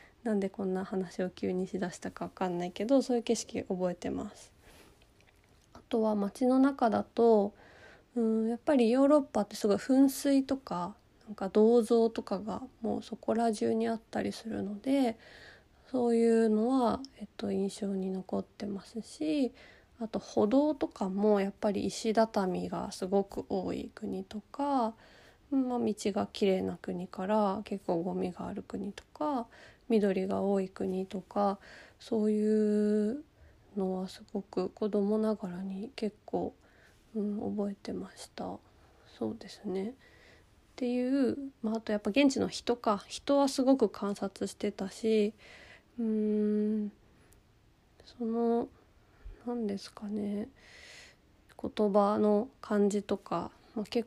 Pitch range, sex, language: 200-235 Hz, female, Japanese